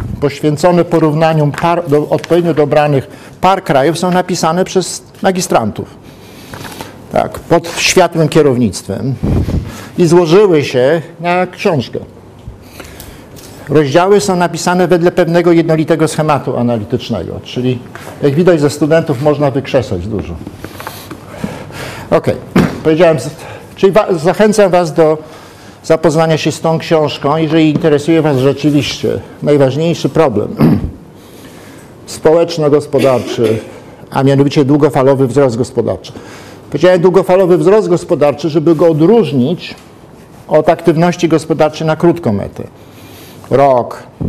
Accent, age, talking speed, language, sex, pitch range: native, 50-69, 100 wpm, Polish, male, 135-175 Hz